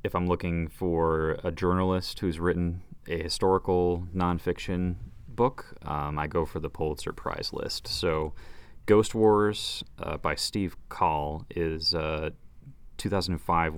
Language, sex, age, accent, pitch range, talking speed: English, male, 30-49, American, 80-90 Hz, 130 wpm